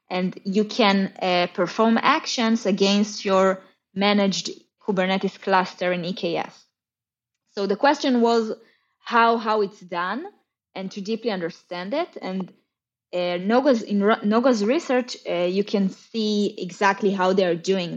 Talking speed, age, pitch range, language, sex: 135 wpm, 20-39, 180-220 Hz, English, female